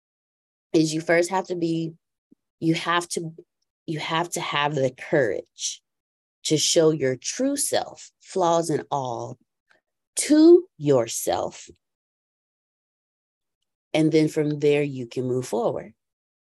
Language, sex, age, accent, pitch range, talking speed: English, female, 30-49, American, 130-175 Hz, 120 wpm